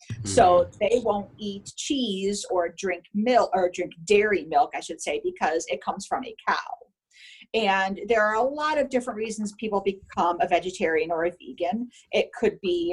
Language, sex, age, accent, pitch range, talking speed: English, female, 50-69, American, 180-230 Hz, 180 wpm